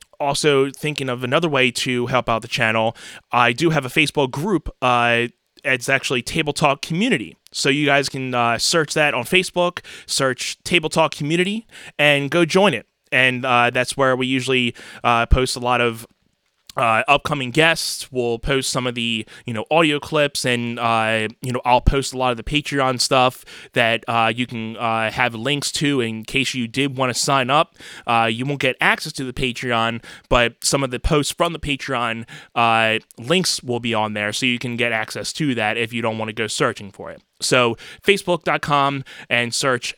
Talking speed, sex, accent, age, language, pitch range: 200 wpm, male, American, 20-39, English, 120-150 Hz